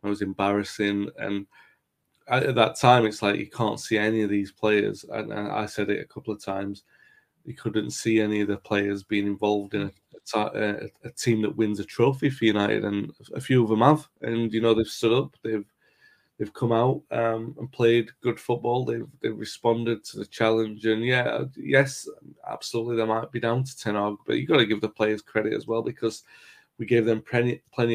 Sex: male